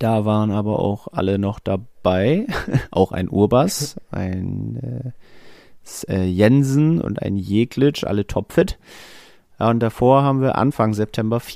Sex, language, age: male, German, 30-49